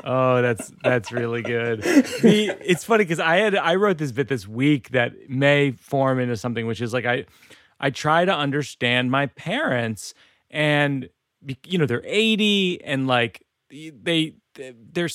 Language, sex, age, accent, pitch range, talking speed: English, male, 30-49, American, 125-185 Hz, 160 wpm